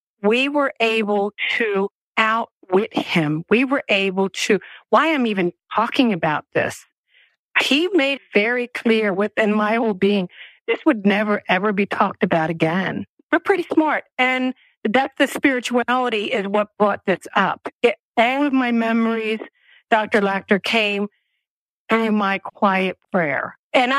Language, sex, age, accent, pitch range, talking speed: English, female, 50-69, American, 190-255 Hz, 145 wpm